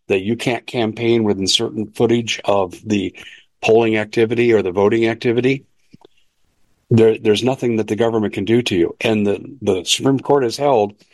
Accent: American